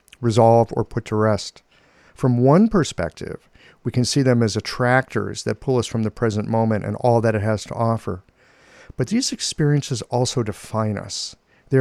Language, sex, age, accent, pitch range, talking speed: English, male, 50-69, American, 110-140 Hz, 180 wpm